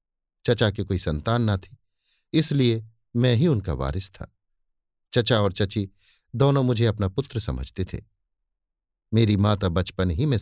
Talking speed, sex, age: 150 wpm, male, 50-69